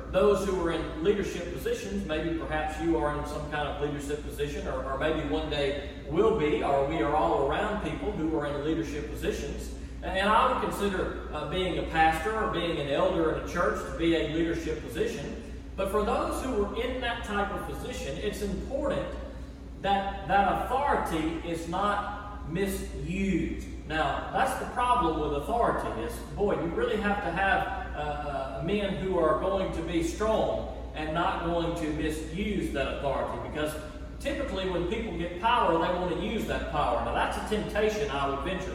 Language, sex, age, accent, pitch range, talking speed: English, male, 40-59, American, 150-195 Hz, 185 wpm